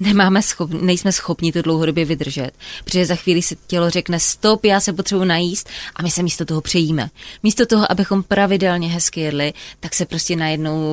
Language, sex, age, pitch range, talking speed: Czech, female, 20-39, 165-195 Hz, 180 wpm